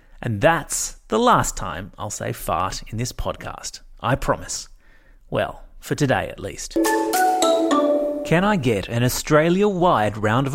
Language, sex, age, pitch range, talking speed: English, male, 30-49, 110-155 Hz, 140 wpm